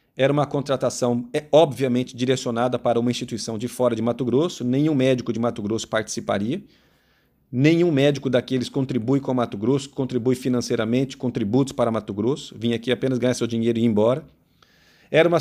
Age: 40-59